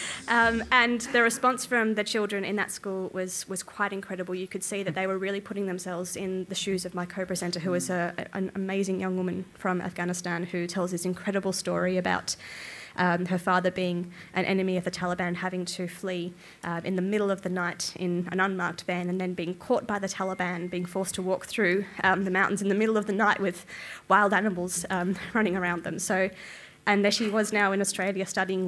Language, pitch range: English, 180-200 Hz